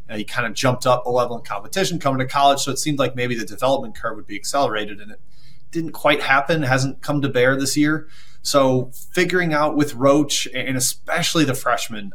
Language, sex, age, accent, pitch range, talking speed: English, male, 30-49, American, 125-145 Hz, 220 wpm